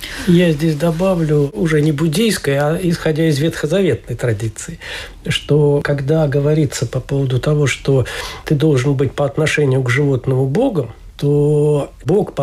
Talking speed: 140 wpm